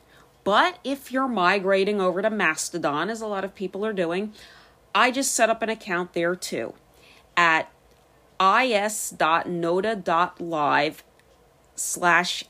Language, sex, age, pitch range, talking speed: English, female, 40-59, 175-225 Hz, 120 wpm